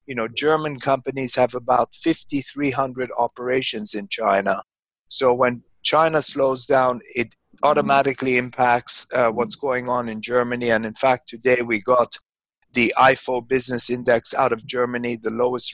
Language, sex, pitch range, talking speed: English, male, 120-130 Hz, 150 wpm